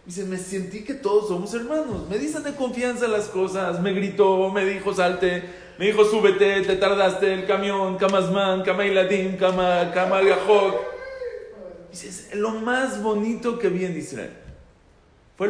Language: Spanish